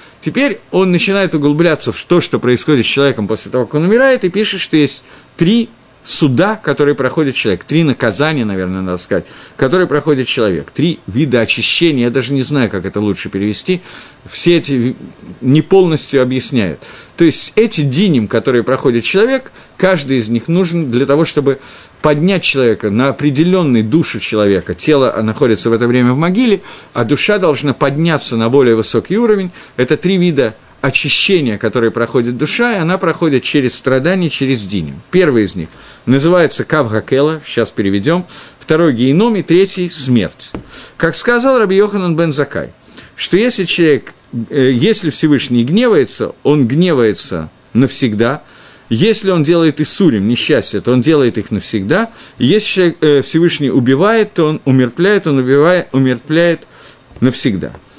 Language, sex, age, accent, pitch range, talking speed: Russian, male, 50-69, native, 125-170 Hz, 150 wpm